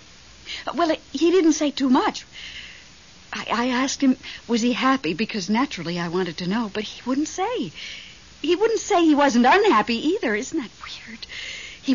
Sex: female